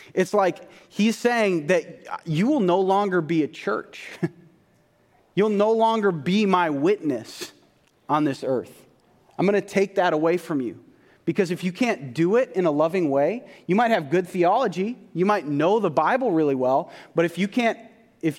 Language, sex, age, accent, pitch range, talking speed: English, male, 30-49, American, 150-195 Hz, 185 wpm